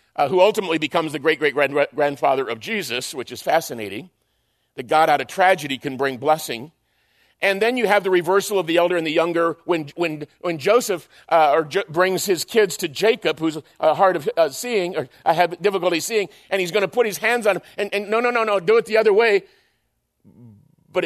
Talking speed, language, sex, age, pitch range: 215 wpm, English, male, 50-69, 155-215 Hz